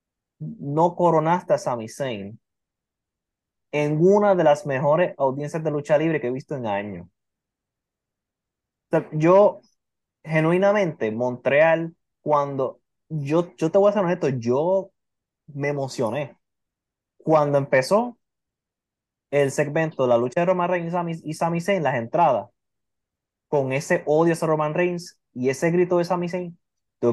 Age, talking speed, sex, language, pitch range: 20-39, 140 wpm, male, English, 130-175 Hz